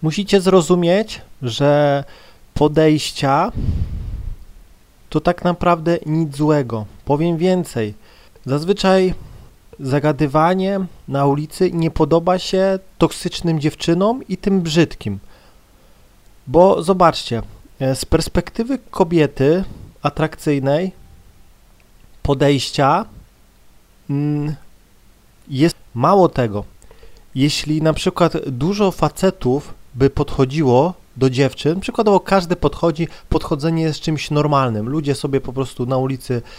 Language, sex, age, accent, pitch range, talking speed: Polish, male, 30-49, native, 130-170 Hz, 90 wpm